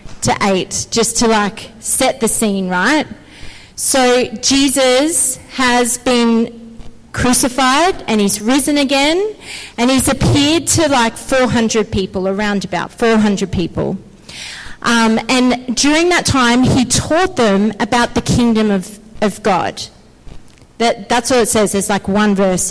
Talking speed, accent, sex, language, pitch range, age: 135 wpm, Australian, female, English, 220-275 Hz, 40-59